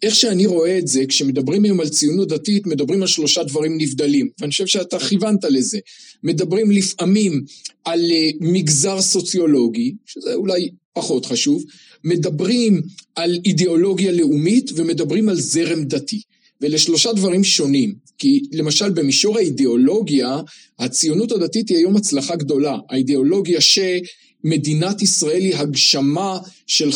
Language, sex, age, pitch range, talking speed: Hebrew, male, 40-59, 150-200 Hz, 125 wpm